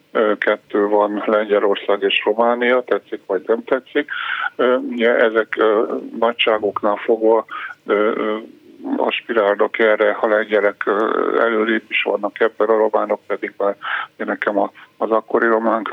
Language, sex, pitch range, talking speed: Hungarian, male, 110-130 Hz, 110 wpm